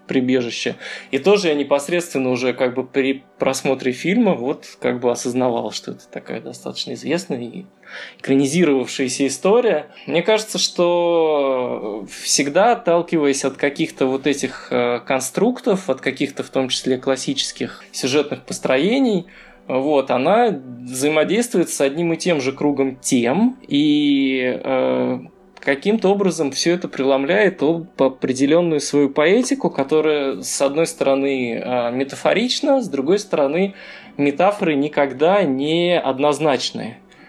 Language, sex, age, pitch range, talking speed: Russian, male, 20-39, 130-175 Hz, 115 wpm